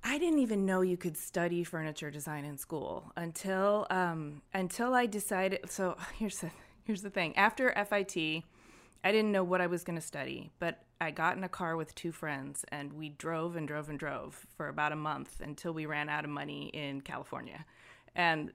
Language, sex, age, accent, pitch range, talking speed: English, female, 20-39, American, 170-225 Hz, 200 wpm